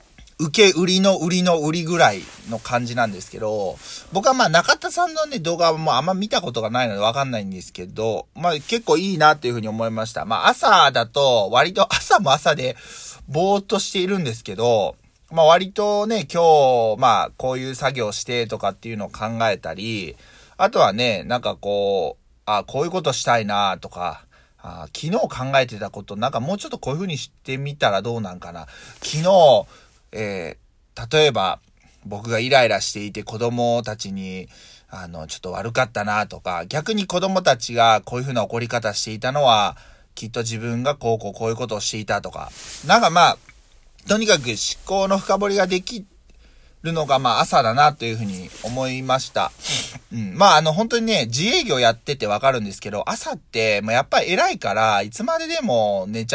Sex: male